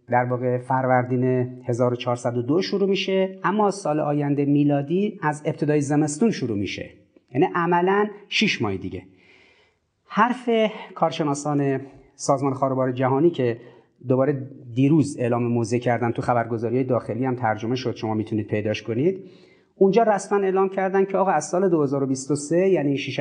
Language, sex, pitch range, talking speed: Persian, male, 130-185 Hz, 130 wpm